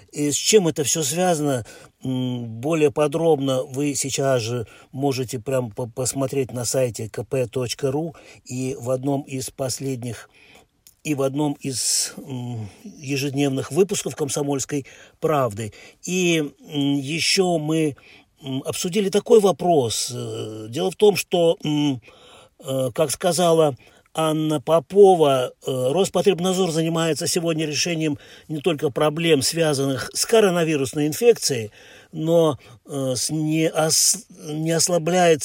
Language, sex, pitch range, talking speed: Russian, male, 135-165 Hz, 95 wpm